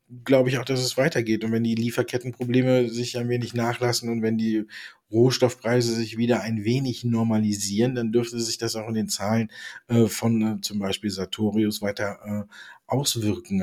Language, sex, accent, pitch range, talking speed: German, male, German, 100-125 Hz, 175 wpm